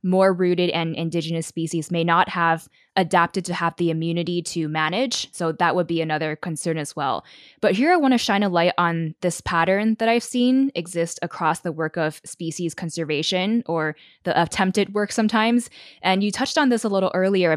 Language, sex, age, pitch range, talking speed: English, female, 10-29, 165-195 Hz, 195 wpm